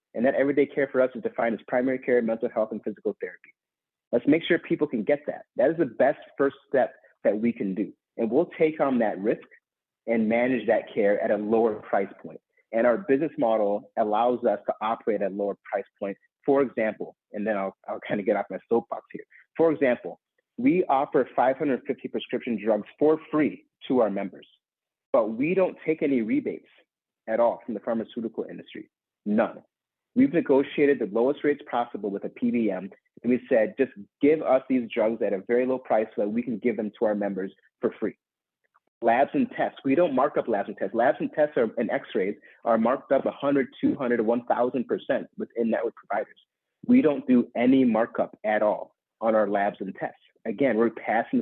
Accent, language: American, English